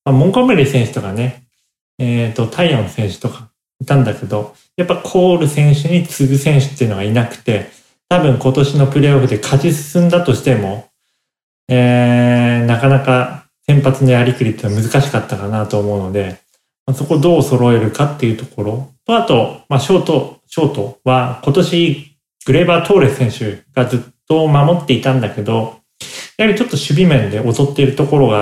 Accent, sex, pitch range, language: native, male, 115-145 Hz, Japanese